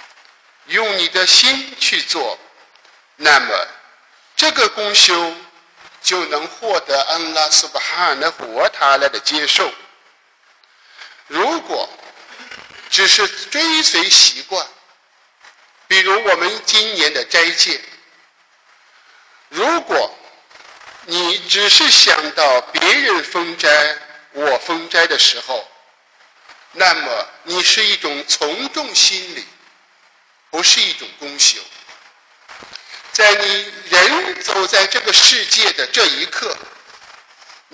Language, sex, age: Chinese, male, 50-69